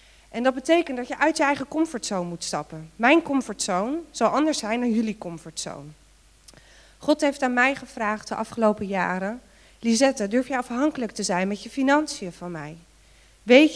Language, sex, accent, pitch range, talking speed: Dutch, female, Dutch, 210-270 Hz, 170 wpm